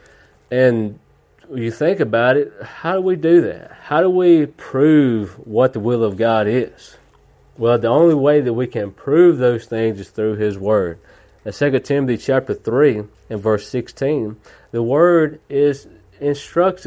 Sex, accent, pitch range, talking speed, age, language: male, American, 110-145 Hz, 165 wpm, 40-59, English